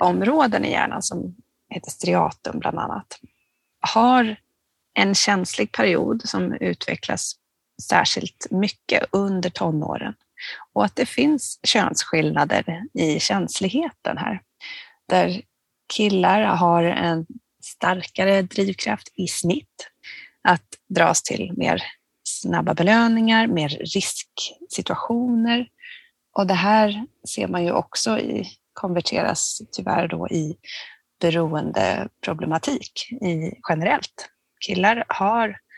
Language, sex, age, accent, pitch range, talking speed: Swedish, female, 30-49, native, 185-250 Hz, 95 wpm